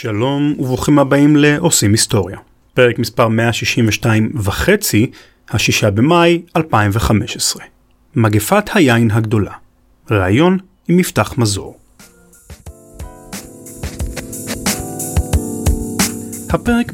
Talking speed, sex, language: 70 wpm, male, Hebrew